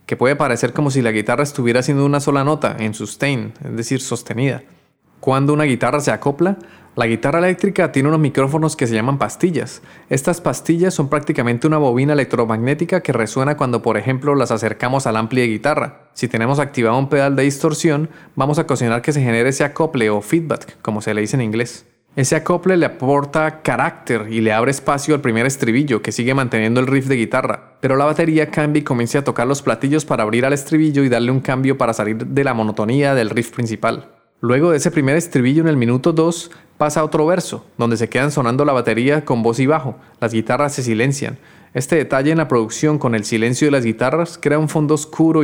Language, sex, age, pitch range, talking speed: Spanish, male, 20-39, 120-150 Hz, 210 wpm